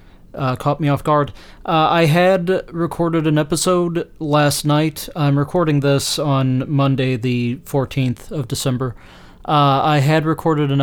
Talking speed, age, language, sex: 150 wpm, 30-49, English, male